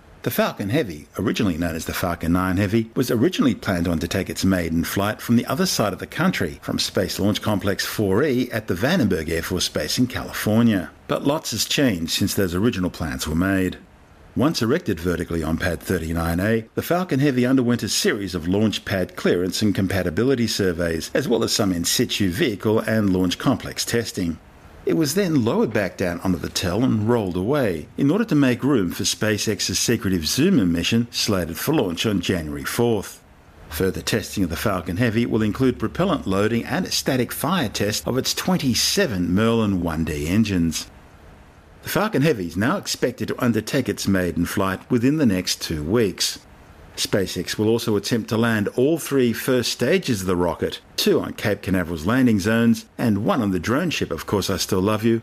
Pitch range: 90-115 Hz